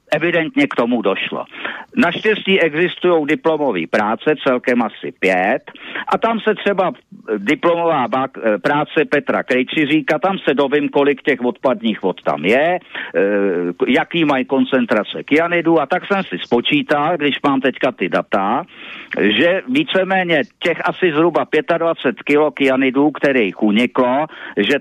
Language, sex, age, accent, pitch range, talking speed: Czech, male, 50-69, native, 125-165 Hz, 135 wpm